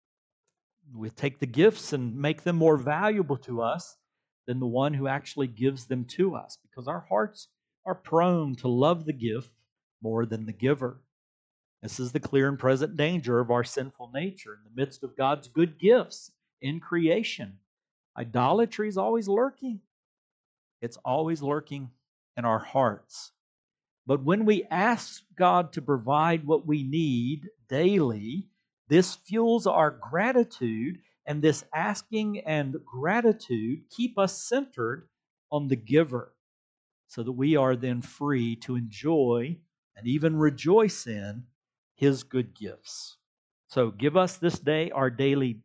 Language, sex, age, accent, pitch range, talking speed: English, male, 50-69, American, 125-170 Hz, 145 wpm